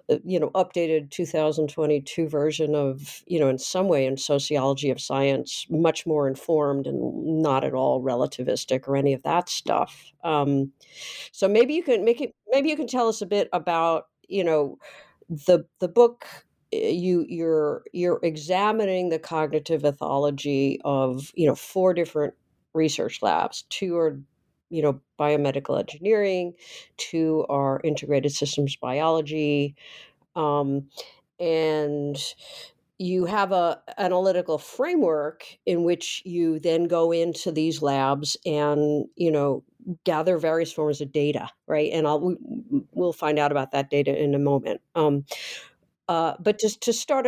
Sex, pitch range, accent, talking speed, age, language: female, 145-180 Hz, American, 145 wpm, 50-69, English